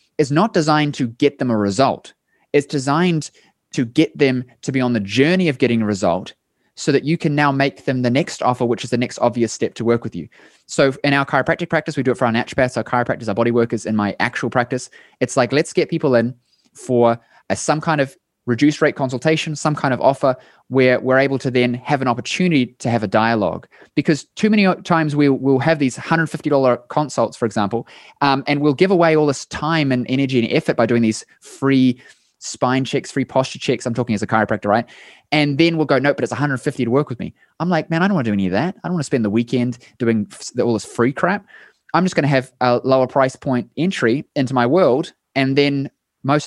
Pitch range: 120-150 Hz